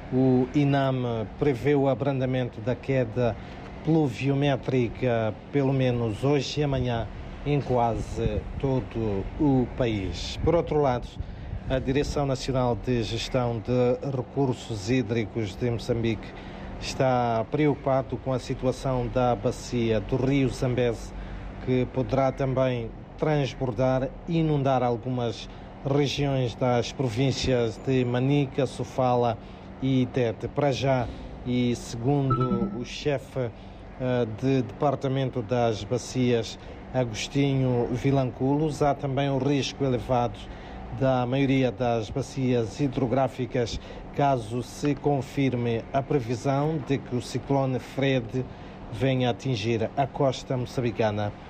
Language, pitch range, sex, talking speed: Portuguese, 115-135 Hz, male, 110 wpm